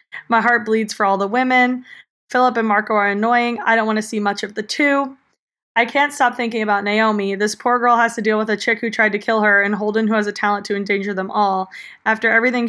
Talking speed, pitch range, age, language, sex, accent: 250 wpm, 210-245 Hz, 20-39, English, female, American